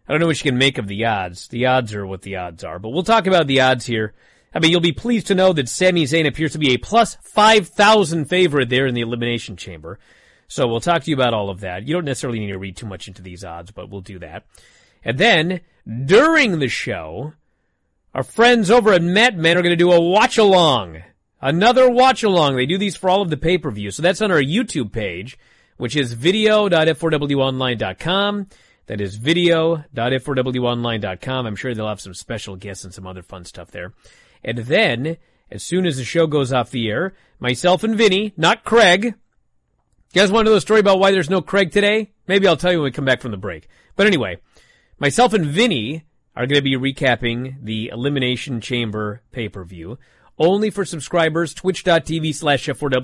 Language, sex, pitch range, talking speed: English, male, 115-185 Hz, 205 wpm